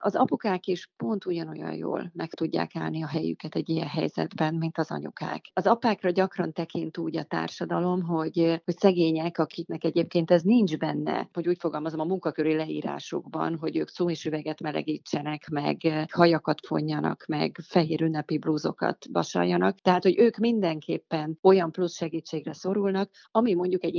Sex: female